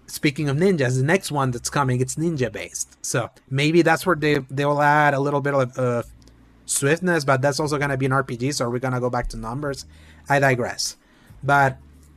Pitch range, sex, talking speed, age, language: 130-165 Hz, male, 220 wpm, 30-49, English